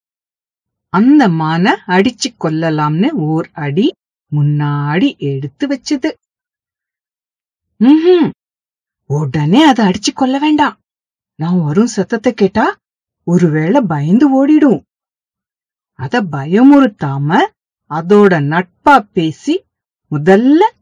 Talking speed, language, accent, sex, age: 80 wpm, English, Indian, female, 50-69